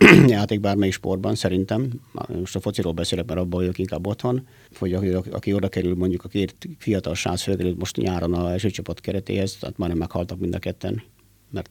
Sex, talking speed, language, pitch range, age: male, 185 wpm, Hungarian, 95-110 Hz, 50-69